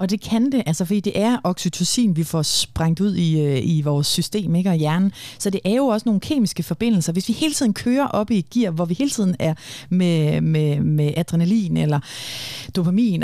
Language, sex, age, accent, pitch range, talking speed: Danish, female, 30-49, native, 160-210 Hz, 215 wpm